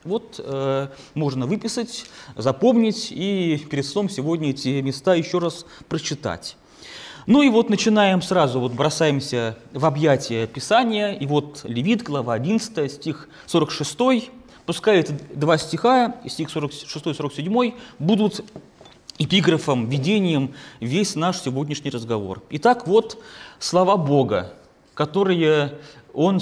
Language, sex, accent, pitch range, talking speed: Russian, male, native, 140-205 Hz, 115 wpm